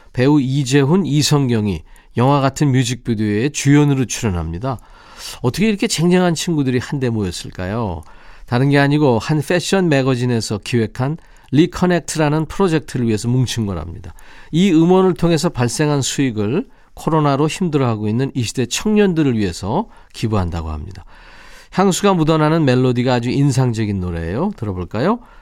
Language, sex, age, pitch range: Korean, male, 40-59, 110-155 Hz